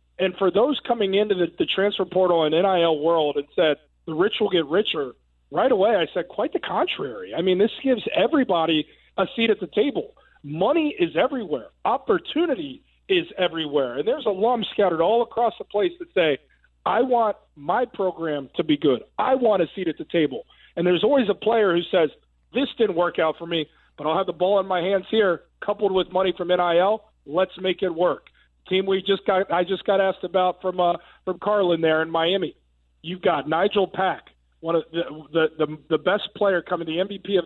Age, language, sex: 40-59, English, male